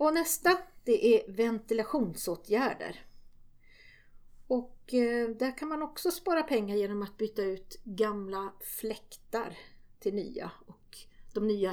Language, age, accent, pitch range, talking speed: Swedish, 40-59, native, 195-235 Hz, 120 wpm